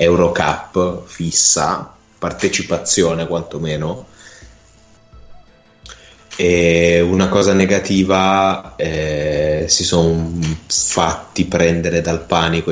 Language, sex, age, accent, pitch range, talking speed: Italian, male, 20-39, native, 80-90 Hz, 75 wpm